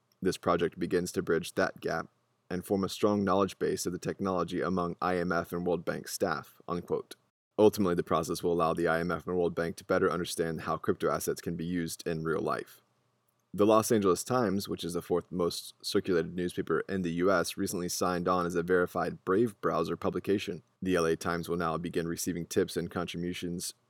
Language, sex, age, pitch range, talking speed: English, male, 20-39, 85-95 Hz, 195 wpm